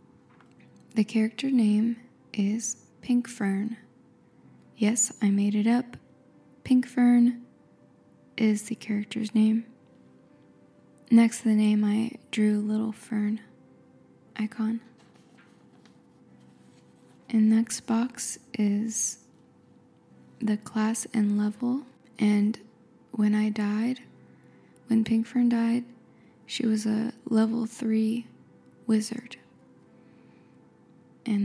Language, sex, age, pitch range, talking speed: English, female, 10-29, 215-235 Hz, 95 wpm